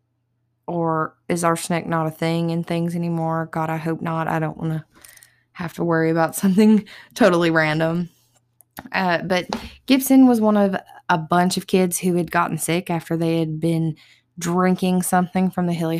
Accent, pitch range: American, 150-175 Hz